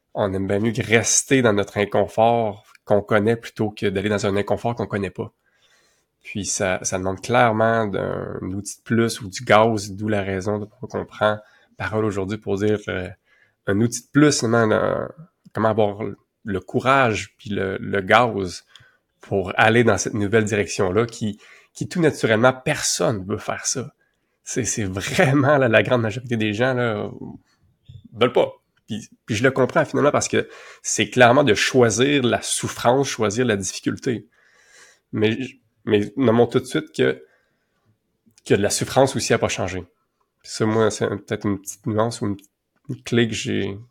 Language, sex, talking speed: French, male, 170 wpm